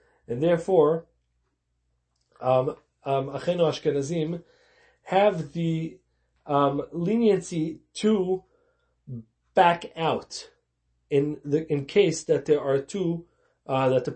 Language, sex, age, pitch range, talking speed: English, male, 30-49, 135-200 Hz, 100 wpm